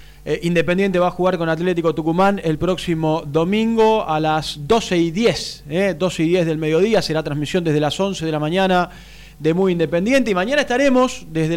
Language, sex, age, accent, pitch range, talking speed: Spanish, male, 20-39, Argentinian, 155-205 Hz, 185 wpm